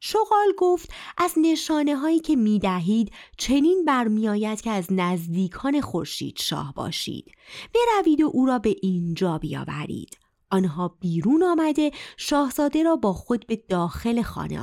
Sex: female